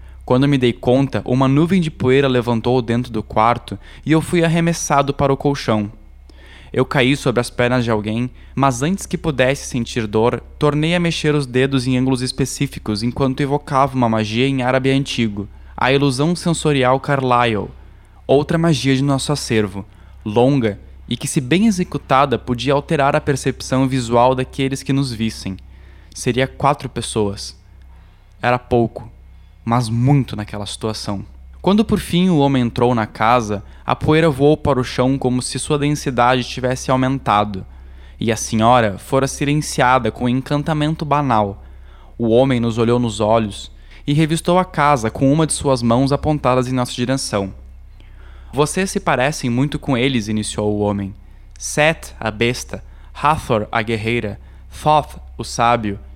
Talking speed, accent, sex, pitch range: 155 wpm, Brazilian, male, 105-140 Hz